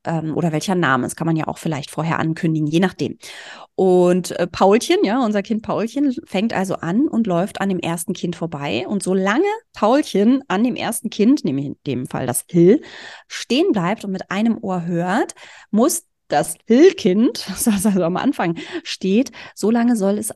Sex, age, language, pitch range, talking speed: female, 30-49, German, 175-230 Hz, 185 wpm